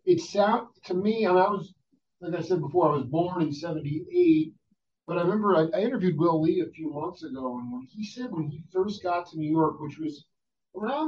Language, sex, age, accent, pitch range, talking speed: English, male, 40-59, American, 135-180 Hz, 225 wpm